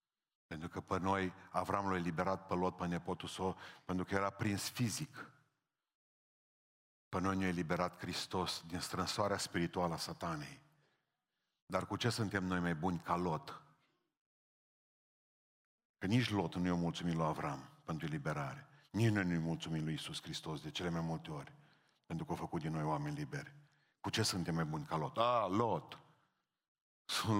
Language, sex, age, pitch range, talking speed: Romanian, male, 50-69, 85-100 Hz, 170 wpm